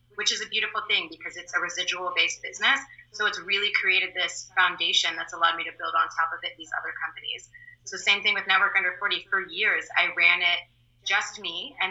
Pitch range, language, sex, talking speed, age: 170-205 Hz, English, female, 220 wpm, 20-39